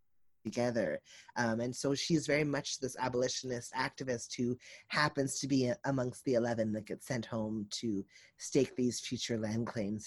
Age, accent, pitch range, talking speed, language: 30-49, American, 115-135 Hz, 160 wpm, English